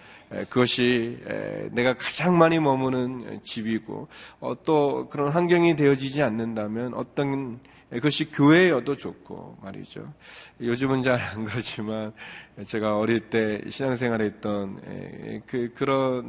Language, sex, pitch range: Korean, male, 110-140 Hz